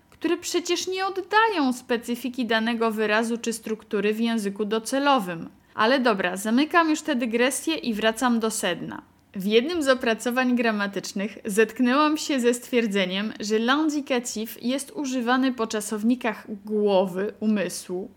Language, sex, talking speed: Polish, female, 130 wpm